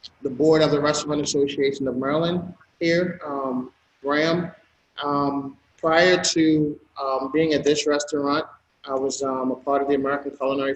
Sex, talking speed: male, 155 wpm